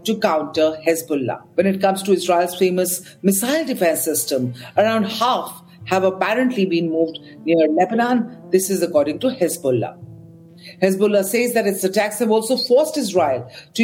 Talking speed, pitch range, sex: 150 wpm, 170-220 Hz, female